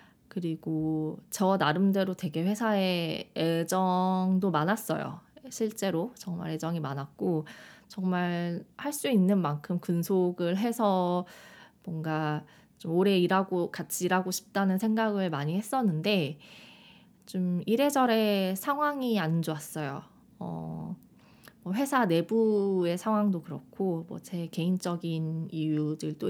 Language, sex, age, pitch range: Korean, female, 20-39, 165-215 Hz